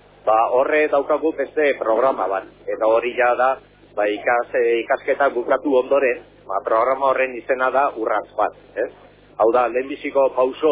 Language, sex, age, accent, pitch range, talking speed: Spanish, male, 40-59, Spanish, 115-155 Hz, 140 wpm